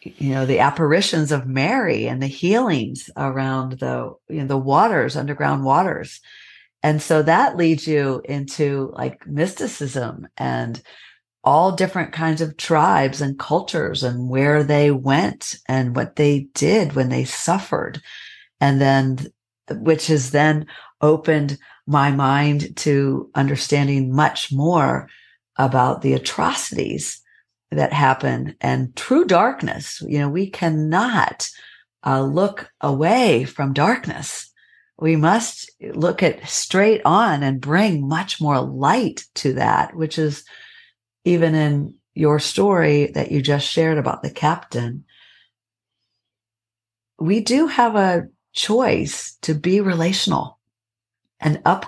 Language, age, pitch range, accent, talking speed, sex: English, 50-69, 135-165 Hz, American, 125 wpm, female